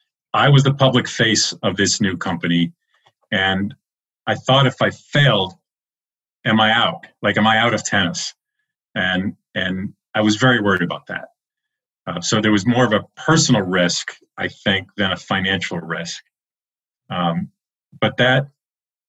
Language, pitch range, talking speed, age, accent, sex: English, 95-130 Hz, 155 wpm, 40-59, American, male